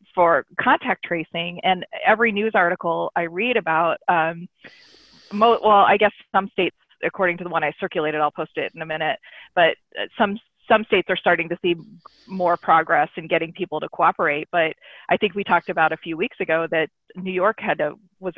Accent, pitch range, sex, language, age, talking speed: American, 170-200 Hz, female, English, 30-49, 195 wpm